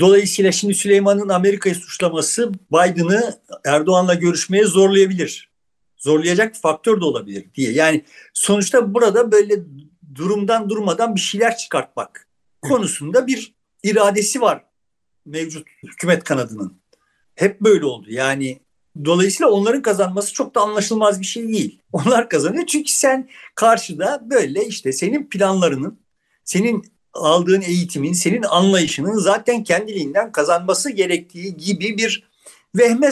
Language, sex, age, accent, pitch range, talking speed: Turkish, male, 60-79, native, 175-230 Hz, 115 wpm